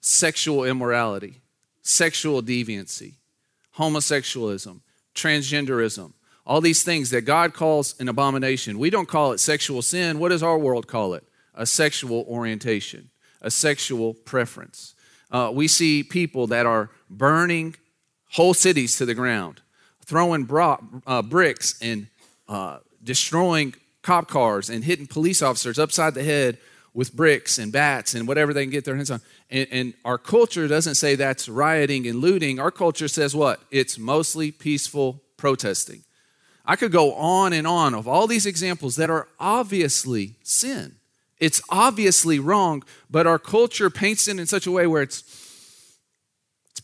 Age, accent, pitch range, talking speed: 40-59, American, 125-165 Hz, 150 wpm